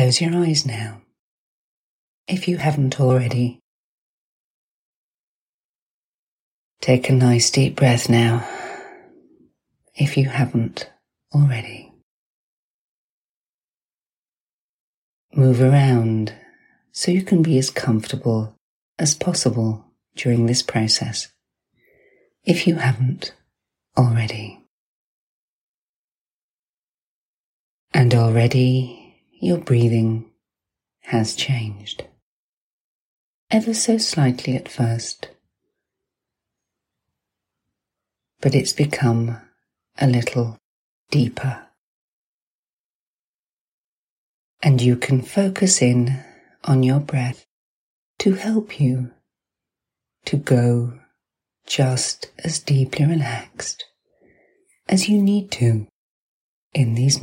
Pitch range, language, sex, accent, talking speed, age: 115-145 Hz, English, female, British, 80 wpm, 40-59